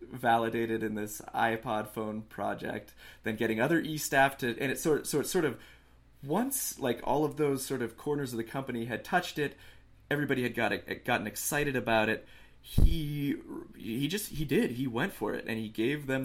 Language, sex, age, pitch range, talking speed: English, male, 30-49, 100-125 Hz, 195 wpm